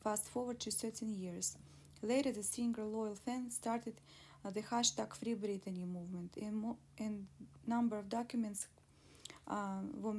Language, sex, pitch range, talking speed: English, female, 205-235 Hz, 140 wpm